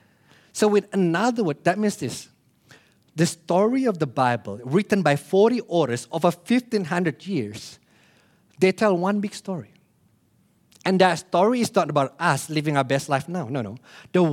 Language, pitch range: English, 135-200 Hz